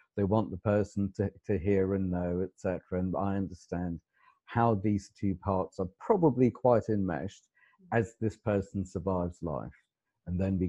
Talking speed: 165 wpm